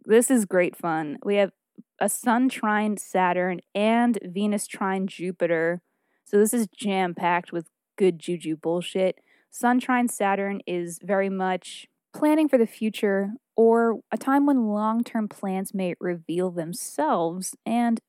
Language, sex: English, female